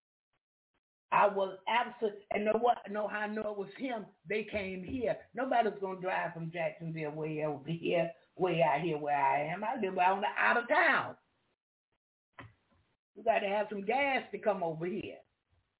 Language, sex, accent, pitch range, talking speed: English, female, American, 160-210 Hz, 170 wpm